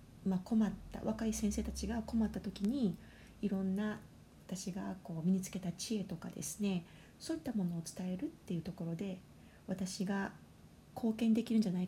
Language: Japanese